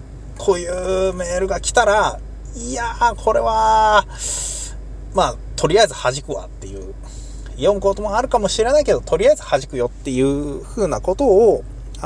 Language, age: Japanese, 20-39